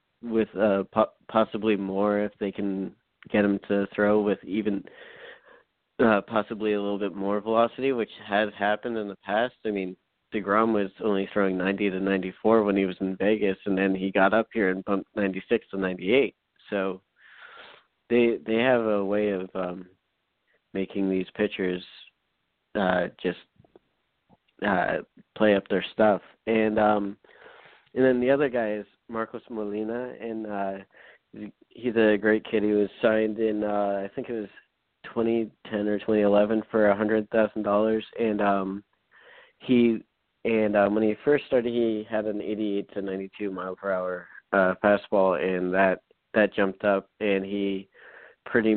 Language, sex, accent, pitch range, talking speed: English, male, American, 95-110 Hz, 160 wpm